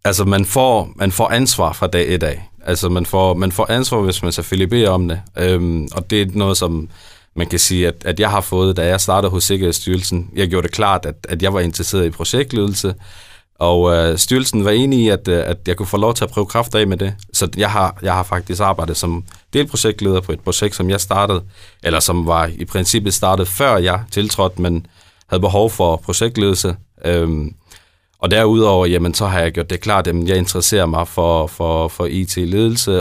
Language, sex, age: Danish, male, 30-49